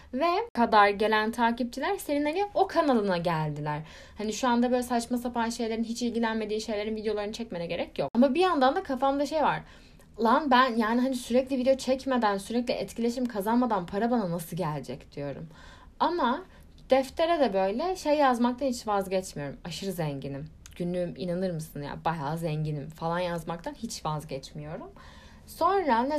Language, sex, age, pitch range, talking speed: Turkish, female, 10-29, 165-245 Hz, 150 wpm